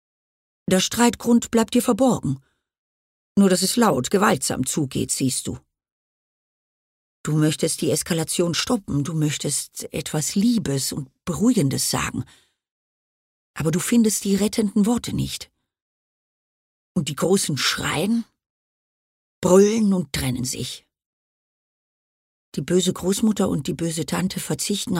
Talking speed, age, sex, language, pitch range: 115 wpm, 40-59, female, German, 140-215 Hz